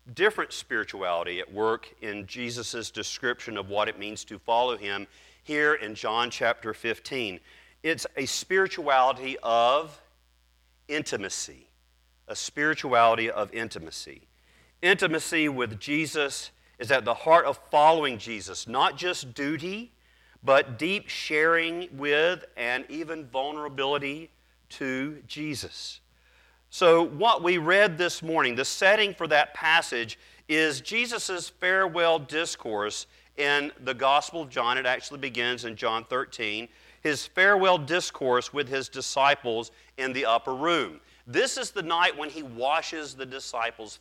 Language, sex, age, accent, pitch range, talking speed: English, male, 40-59, American, 115-155 Hz, 130 wpm